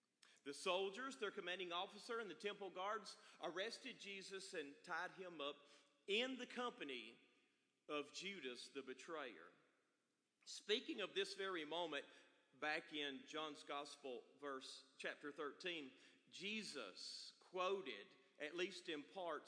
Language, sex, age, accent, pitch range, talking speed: English, male, 40-59, American, 150-210 Hz, 125 wpm